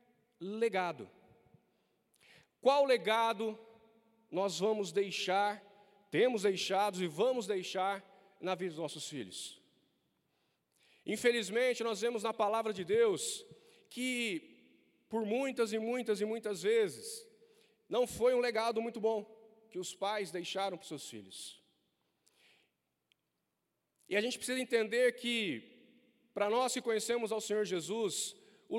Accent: Brazilian